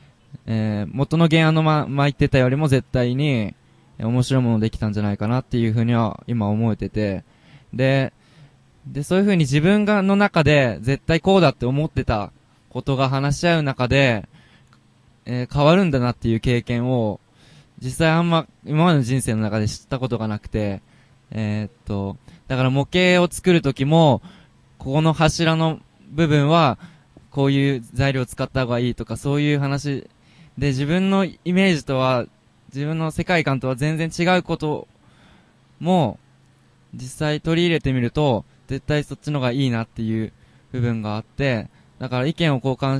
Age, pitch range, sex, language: 20-39, 115-150 Hz, male, Japanese